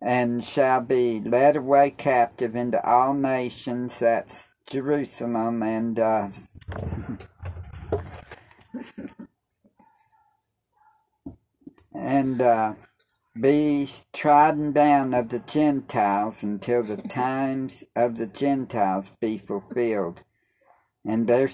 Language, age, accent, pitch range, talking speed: English, 50-69, American, 115-145 Hz, 85 wpm